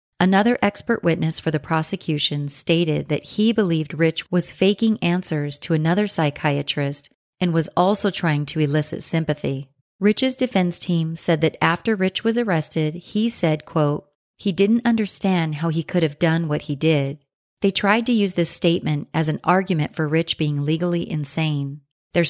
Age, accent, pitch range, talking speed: 30-49, American, 155-195 Hz, 165 wpm